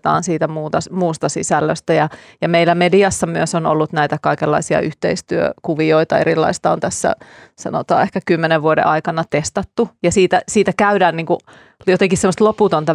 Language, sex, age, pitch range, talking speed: Finnish, female, 30-49, 160-190 Hz, 145 wpm